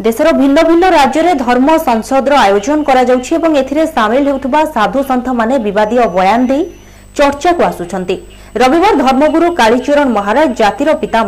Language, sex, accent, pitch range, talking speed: Hindi, female, native, 215-285 Hz, 85 wpm